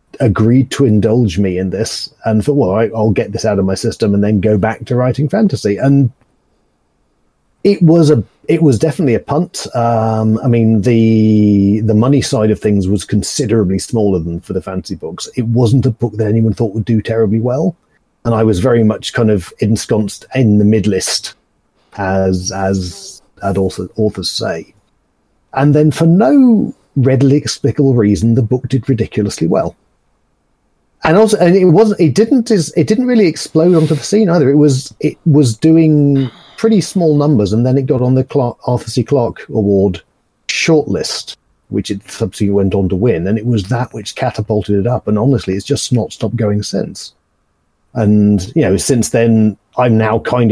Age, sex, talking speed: 40-59, male, 185 wpm